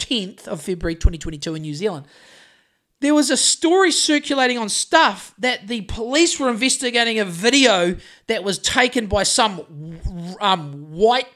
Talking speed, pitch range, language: 150 wpm, 190-280 Hz, English